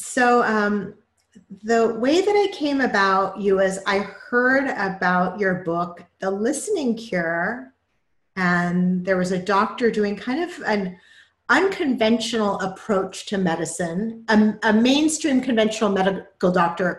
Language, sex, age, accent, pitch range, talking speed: English, female, 40-59, American, 205-275 Hz, 130 wpm